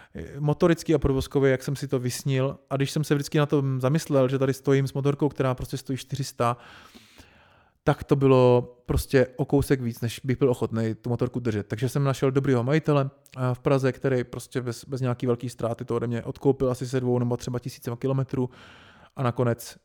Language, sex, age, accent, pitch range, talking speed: Czech, male, 30-49, native, 125-150 Hz, 200 wpm